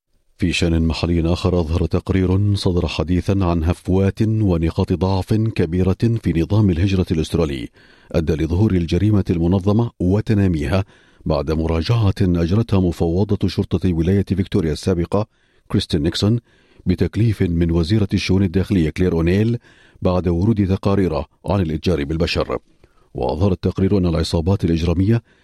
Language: Arabic